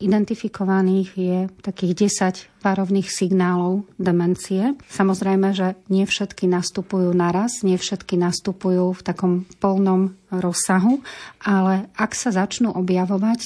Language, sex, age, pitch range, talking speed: Slovak, female, 30-49, 180-195 Hz, 105 wpm